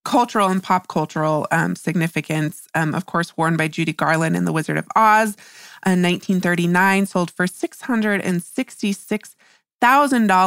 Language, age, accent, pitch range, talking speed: English, 20-39, American, 170-215 Hz, 125 wpm